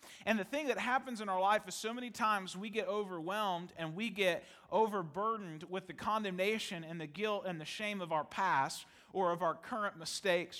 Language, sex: English, male